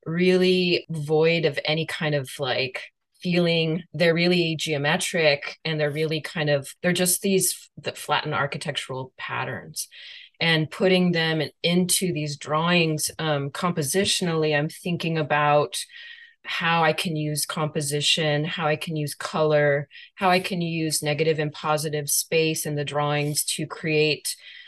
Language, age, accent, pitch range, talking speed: English, 20-39, American, 150-175 Hz, 140 wpm